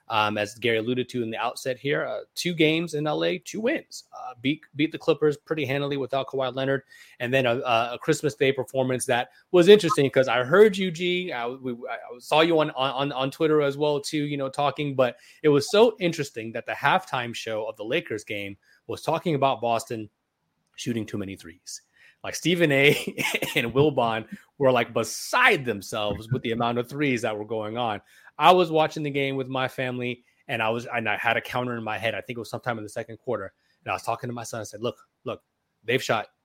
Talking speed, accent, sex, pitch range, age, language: 225 wpm, American, male, 120-155 Hz, 30-49, English